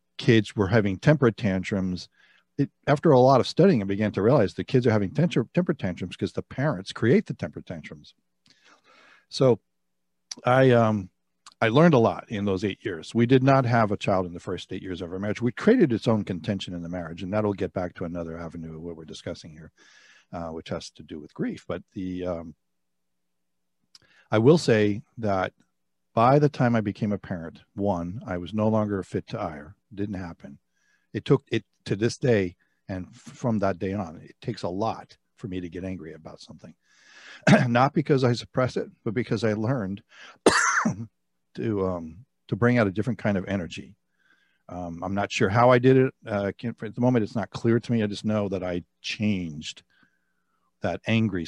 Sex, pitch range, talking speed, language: male, 90-115 Hz, 200 wpm, English